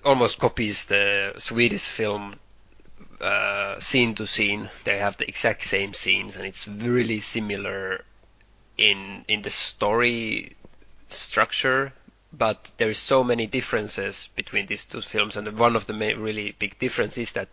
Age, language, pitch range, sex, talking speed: 20-39, English, 105-125 Hz, male, 150 wpm